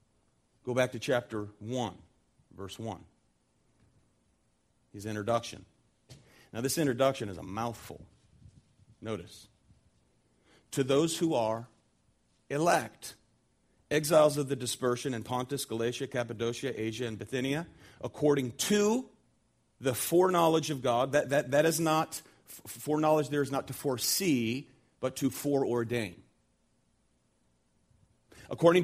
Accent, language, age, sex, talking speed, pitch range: American, English, 40-59, male, 110 wpm, 110-150 Hz